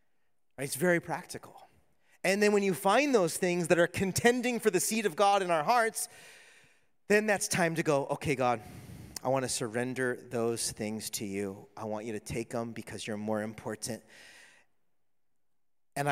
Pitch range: 110-150 Hz